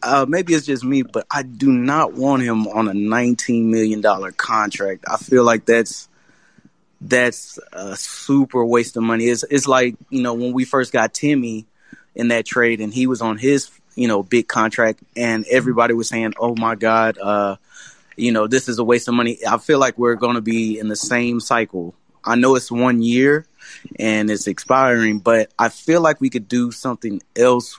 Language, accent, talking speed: English, American, 200 wpm